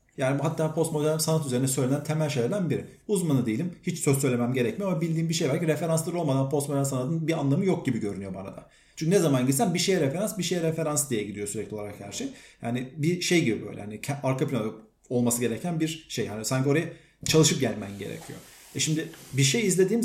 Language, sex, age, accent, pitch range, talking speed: Turkish, male, 40-59, native, 130-175 Hz, 210 wpm